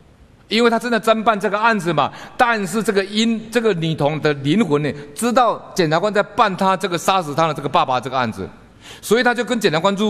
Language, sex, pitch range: Chinese, male, 150-225 Hz